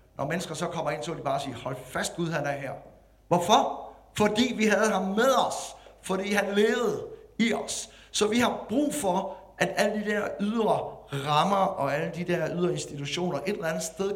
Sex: male